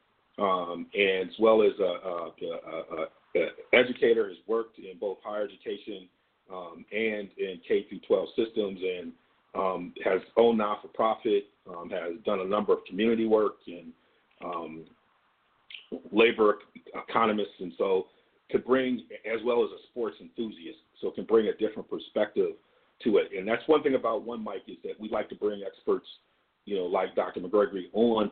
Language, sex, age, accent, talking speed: English, male, 40-59, American, 160 wpm